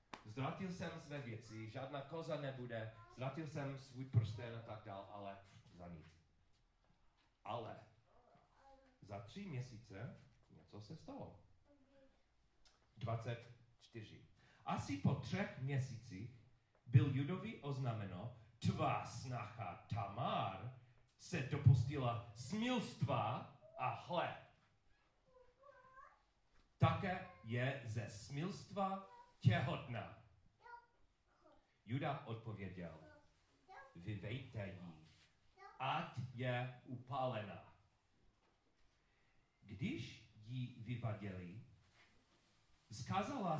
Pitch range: 110-140 Hz